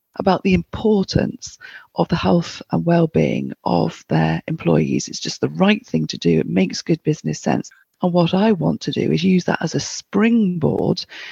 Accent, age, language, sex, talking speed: British, 40-59, English, female, 185 wpm